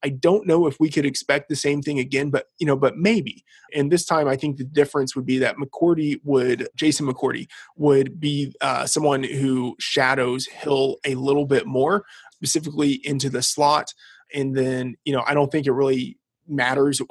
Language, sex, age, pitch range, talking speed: English, male, 20-39, 130-145 Hz, 195 wpm